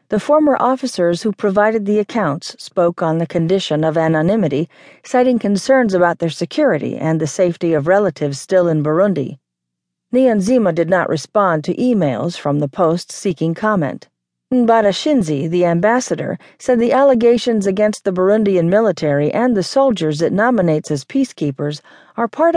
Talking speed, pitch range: 150 wpm, 165-220 Hz